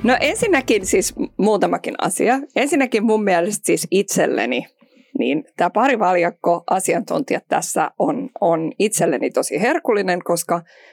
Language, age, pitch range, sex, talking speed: Finnish, 20-39, 170-230 Hz, female, 115 wpm